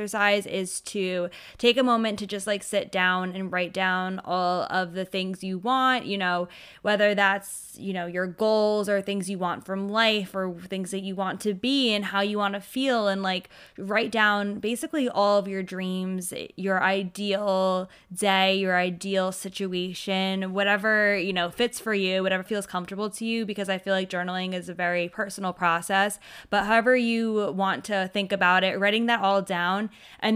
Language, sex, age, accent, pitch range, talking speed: English, female, 20-39, American, 190-210 Hz, 190 wpm